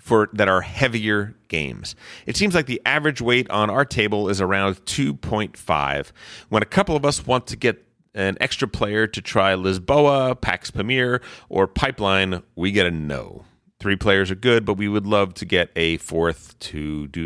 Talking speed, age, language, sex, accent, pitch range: 185 wpm, 30-49, English, male, American, 80-110 Hz